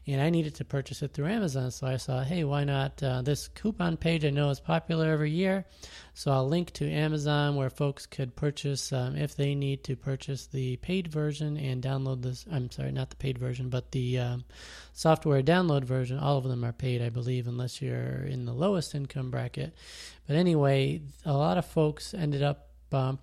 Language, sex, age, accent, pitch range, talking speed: English, male, 30-49, American, 130-150 Hz, 205 wpm